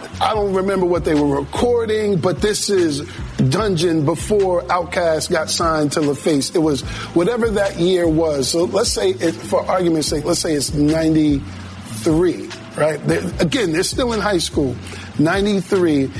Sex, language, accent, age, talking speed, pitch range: male, English, American, 50-69, 160 wpm, 150-195 Hz